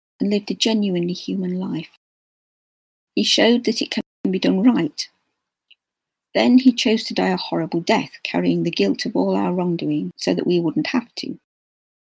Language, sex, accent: English, female, British